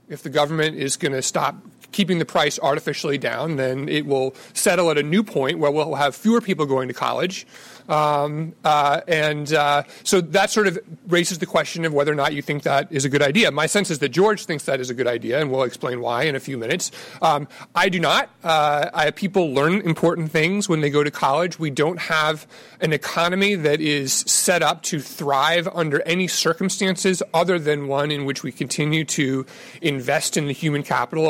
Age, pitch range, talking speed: 30-49, 145-185 Hz, 210 wpm